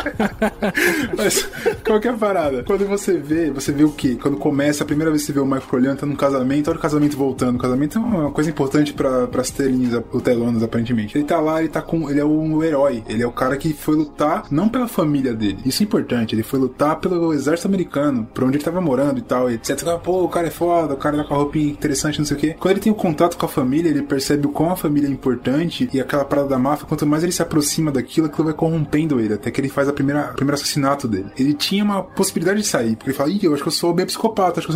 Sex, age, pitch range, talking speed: male, 20-39, 135-170 Hz, 270 wpm